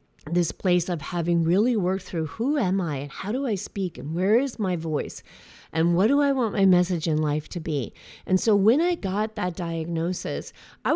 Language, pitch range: English, 165-215 Hz